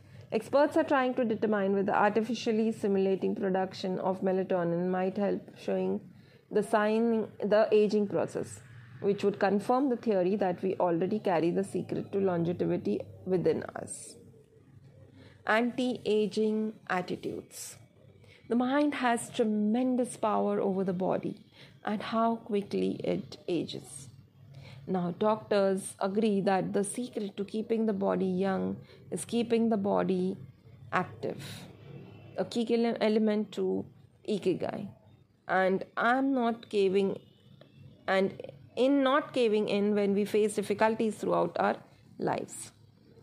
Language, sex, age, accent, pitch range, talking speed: Marathi, female, 30-49, native, 180-225 Hz, 125 wpm